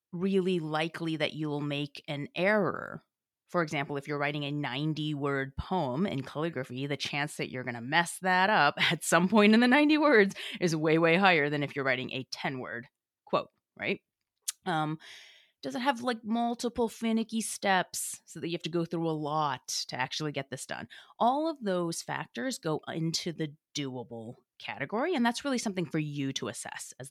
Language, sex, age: English, female, 30-49